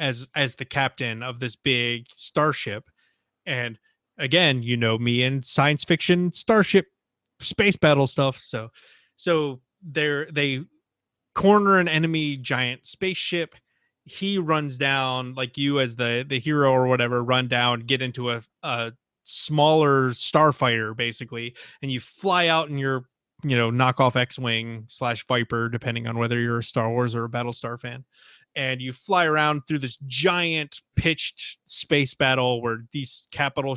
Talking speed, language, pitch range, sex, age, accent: 155 wpm, English, 125-155 Hz, male, 20-39, American